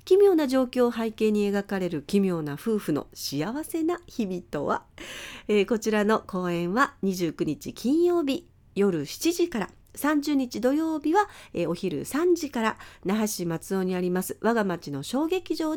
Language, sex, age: Japanese, female, 40-59